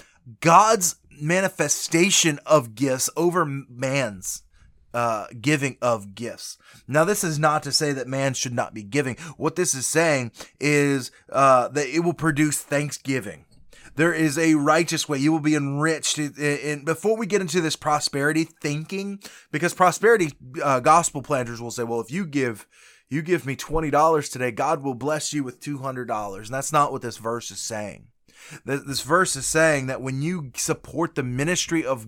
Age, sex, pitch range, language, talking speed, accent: 30-49, male, 130-160 Hz, English, 175 wpm, American